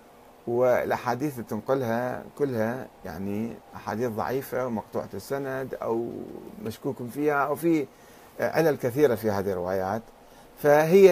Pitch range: 115-160 Hz